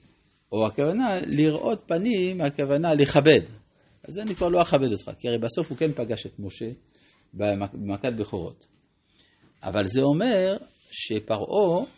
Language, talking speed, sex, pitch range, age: Hebrew, 130 wpm, male, 105-150 Hz, 50-69